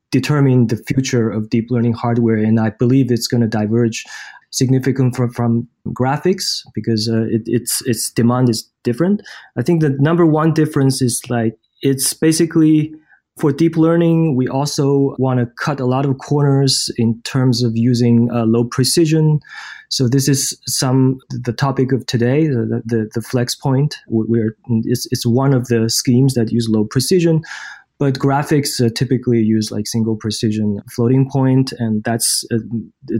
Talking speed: 165 wpm